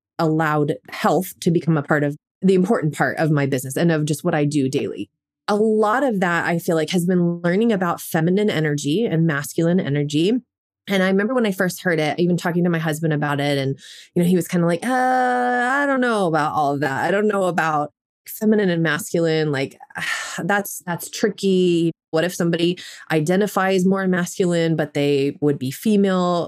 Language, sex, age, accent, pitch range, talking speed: English, female, 20-39, American, 150-195 Hz, 200 wpm